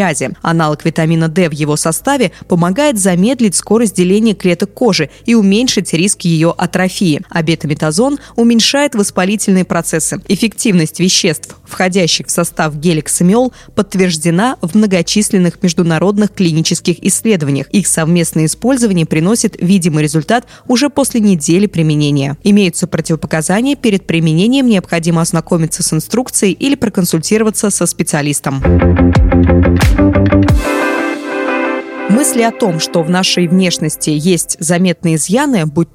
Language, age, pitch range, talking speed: Russian, 20-39, 165-220 Hz, 110 wpm